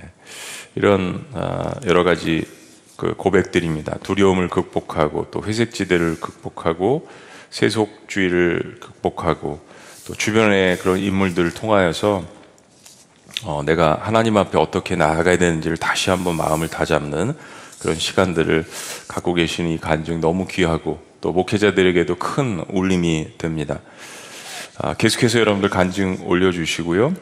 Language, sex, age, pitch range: Korean, male, 30-49, 85-105 Hz